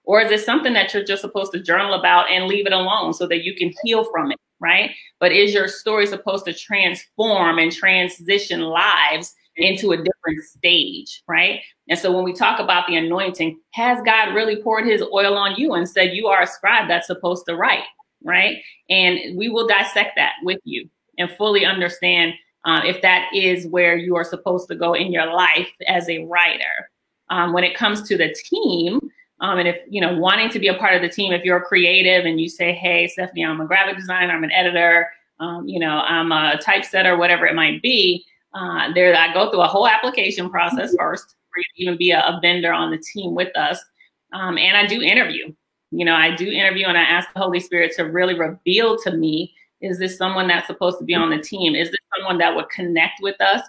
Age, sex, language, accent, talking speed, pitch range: 30-49, female, English, American, 220 wpm, 170-200 Hz